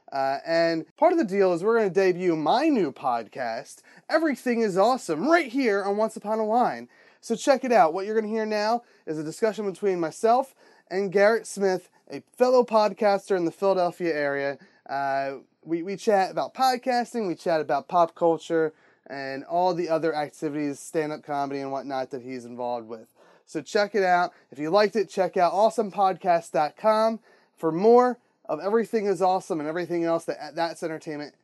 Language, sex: English, male